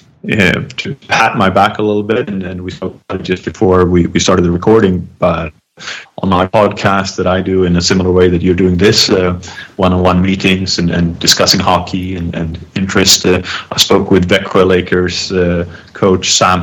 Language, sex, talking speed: English, male, 200 wpm